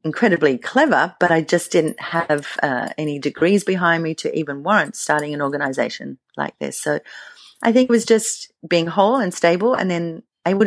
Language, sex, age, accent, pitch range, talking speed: English, female, 40-59, Australian, 160-200 Hz, 185 wpm